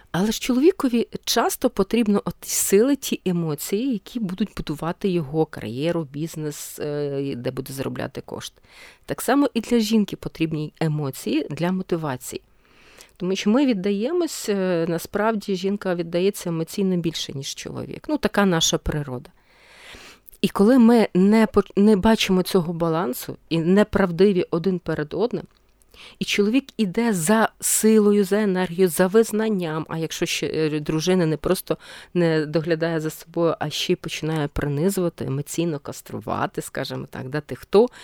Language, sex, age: Ukrainian, female, 40-59